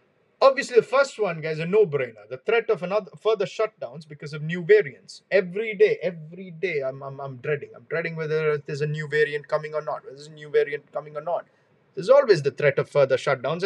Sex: male